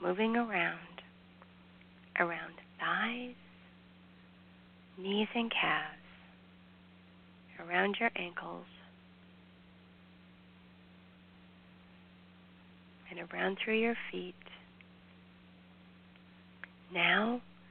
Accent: American